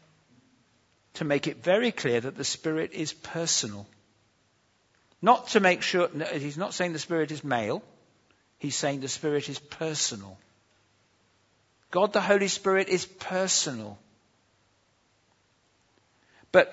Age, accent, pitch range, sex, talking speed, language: 50-69, British, 130-210 Hz, male, 120 wpm, English